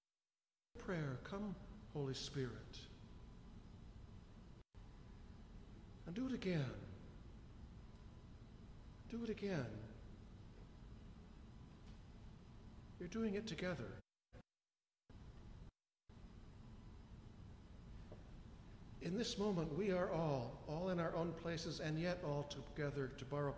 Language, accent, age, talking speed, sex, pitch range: English, American, 60-79, 80 wpm, male, 110-170 Hz